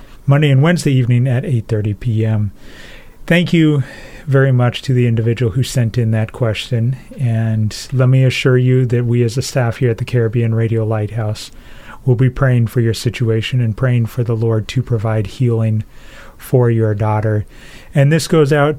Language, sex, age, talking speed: English, male, 30-49, 180 wpm